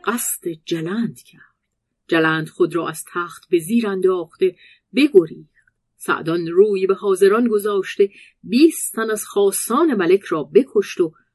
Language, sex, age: Persian, female, 40-59